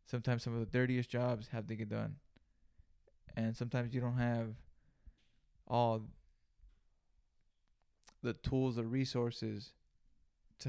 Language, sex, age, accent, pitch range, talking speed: English, male, 20-39, American, 110-125 Hz, 120 wpm